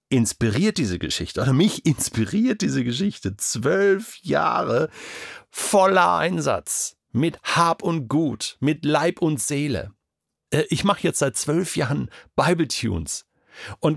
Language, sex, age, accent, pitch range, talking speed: German, male, 50-69, German, 95-135 Hz, 125 wpm